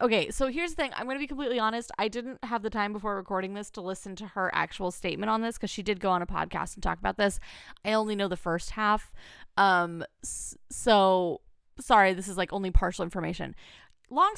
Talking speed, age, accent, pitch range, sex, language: 225 wpm, 20-39, American, 185-230 Hz, female, English